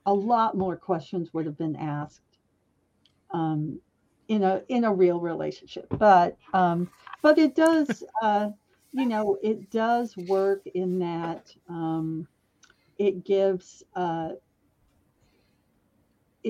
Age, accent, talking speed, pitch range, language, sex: 50-69, American, 115 wpm, 165-205 Hz, English, female